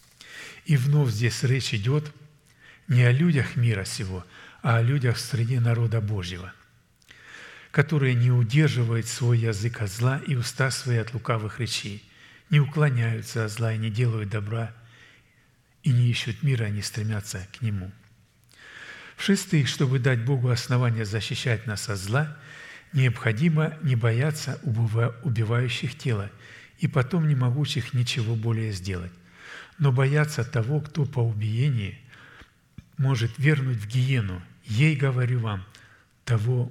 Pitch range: 110-135 Hz